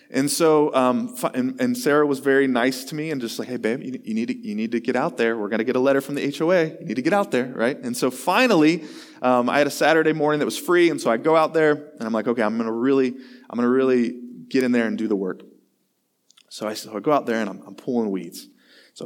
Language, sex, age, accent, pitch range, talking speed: English, male, 20-39, American, 120-160 Hz, 280 wpm